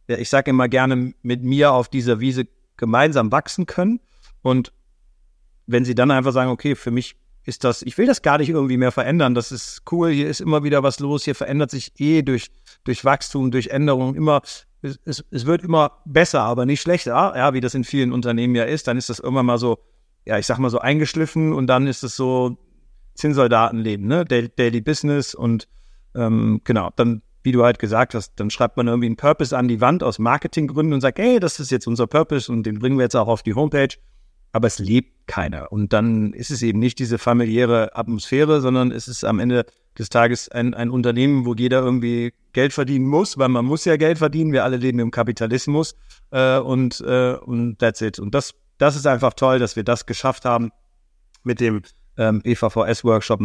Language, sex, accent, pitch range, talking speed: German, male, German, 115-140 Hz, 210 wpm